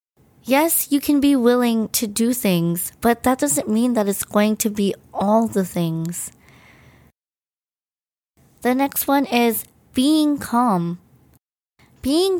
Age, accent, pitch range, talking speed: 20-39, American, 210-260 Hz, 130 wpm